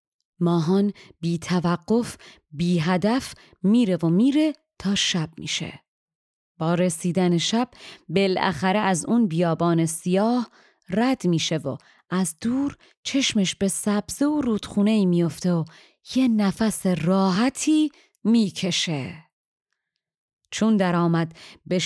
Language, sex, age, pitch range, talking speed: Persian, female, 30-49, 170-220 Hz, 105 wpm